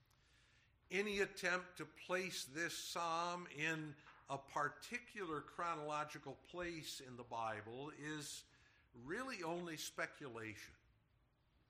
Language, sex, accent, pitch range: English, male, American, 145-190 Hz